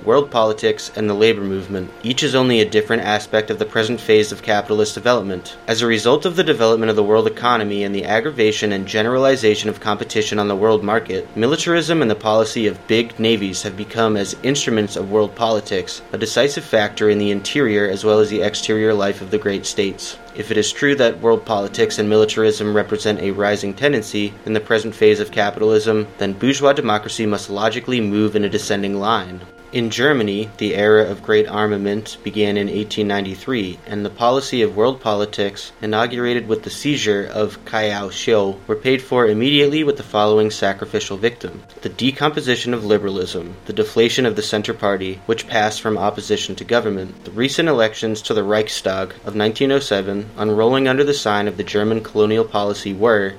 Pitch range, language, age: 105-115 Hz, English, 20-39